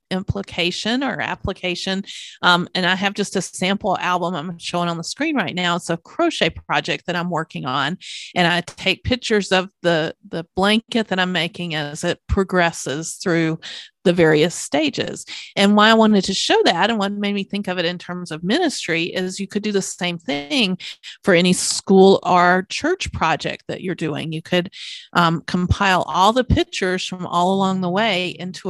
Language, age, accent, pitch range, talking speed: English, 40-59, American, 170-205 Hz, 190 wpm